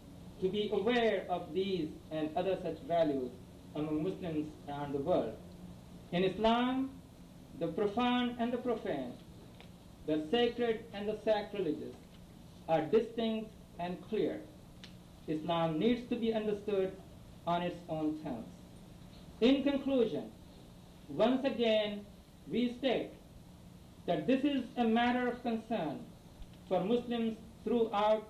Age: 50-69